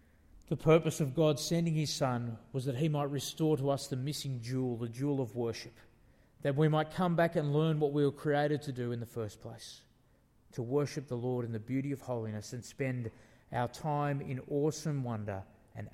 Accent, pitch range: Australian, 110-145 Hz